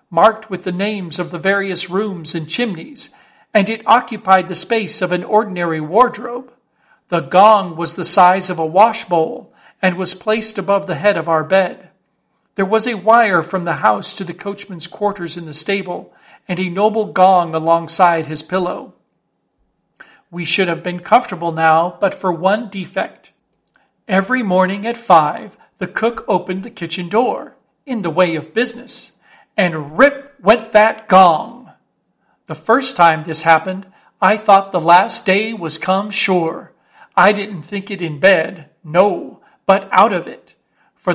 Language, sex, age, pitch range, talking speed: English, male, 50-69, 175-215 Hz, 165 wpm